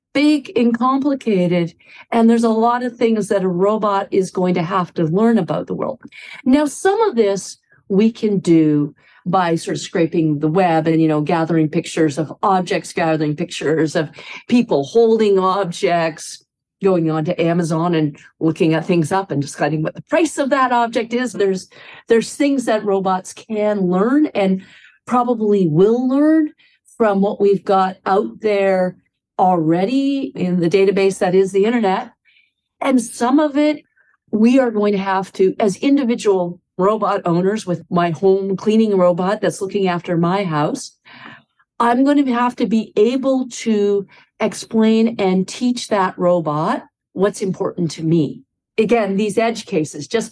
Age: 50-69